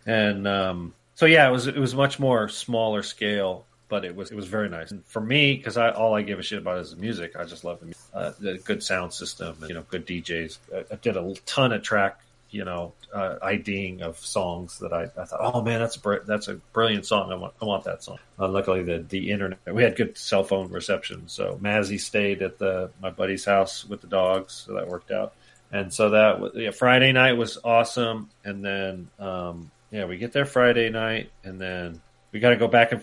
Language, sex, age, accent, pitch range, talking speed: English, male, 40-59, American, 95-115 Hz, 240 wpm